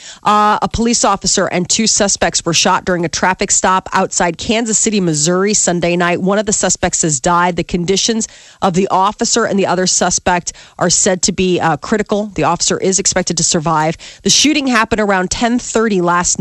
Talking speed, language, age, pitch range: 190 wpm, English, 40-59, 180-215 Hz